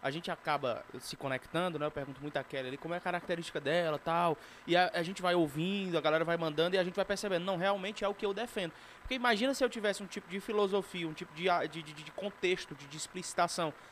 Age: 20-39